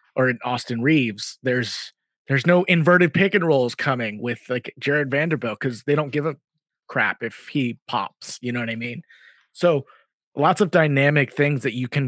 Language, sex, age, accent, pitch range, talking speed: English, male, 30-49, American, 125-165 Hz, 190 wpm